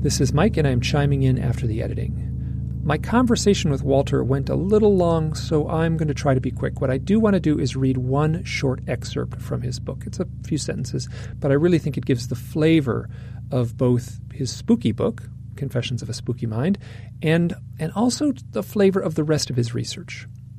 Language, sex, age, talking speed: English, male, 40-59, 215 wpm